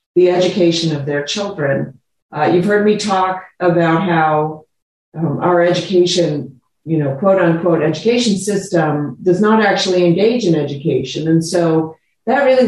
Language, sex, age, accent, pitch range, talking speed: English, female, 50-69, American, 165-200 Hz, 145 wpm